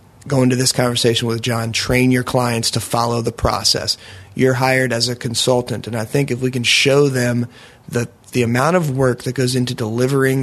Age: 30-49